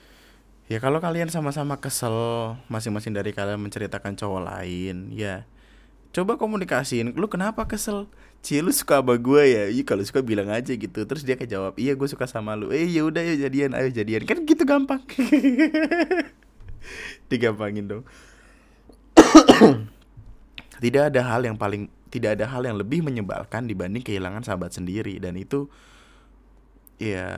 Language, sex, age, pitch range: Indonesian, male, 20-39, 105-140 Hz